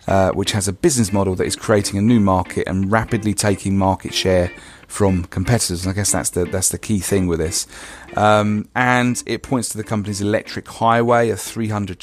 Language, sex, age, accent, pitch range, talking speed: English, male, 40-59, British, 100-115 Hz, 205 wpm